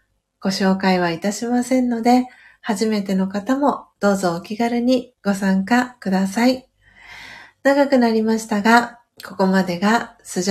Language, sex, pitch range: Japanese, female, 195-245 Hz